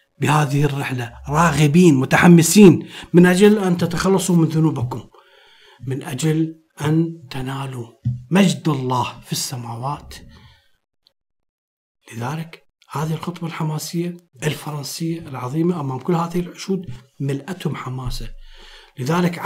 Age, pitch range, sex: 50-69, 135-170 Hz, male